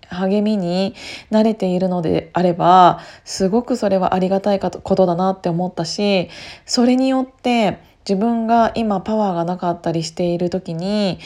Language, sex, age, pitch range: Japanese, female, 20-39, 175-230 Hz